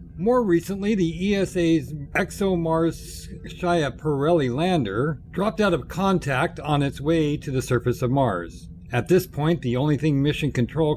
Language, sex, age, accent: English, male, 50-69, American